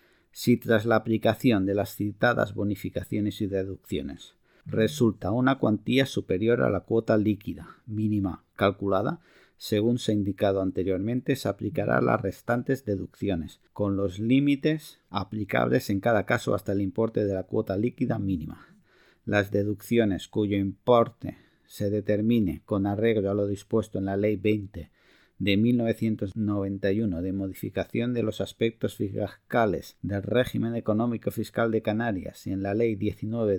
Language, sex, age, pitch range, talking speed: Spanish, male, 50-69, 100-115 Hz, 140 wpm